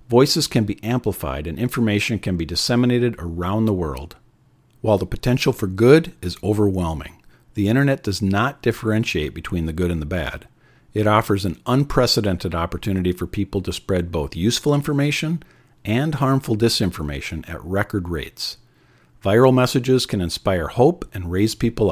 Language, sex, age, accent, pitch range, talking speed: English, male, 50-69, American, 90-125 Hz, 155 wpm